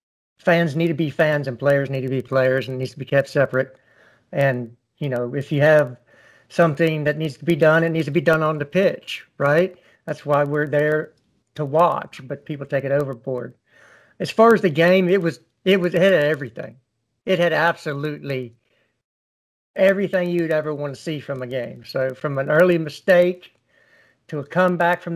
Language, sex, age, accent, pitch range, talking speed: English, male, 60-79, American, 130-165 Hz, 195 wpm